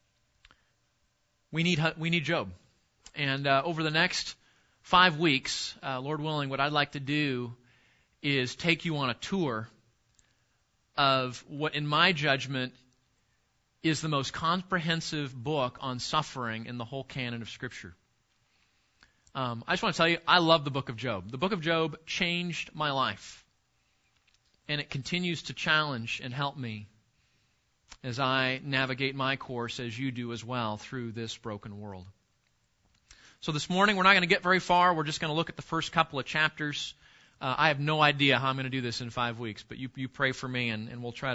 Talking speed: 190 wpm